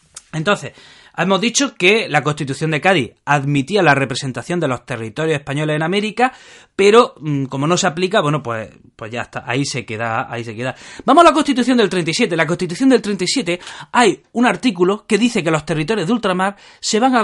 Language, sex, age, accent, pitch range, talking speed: Spanish, male, 30-49, Spanish, 135-200 Hz, 200 wpm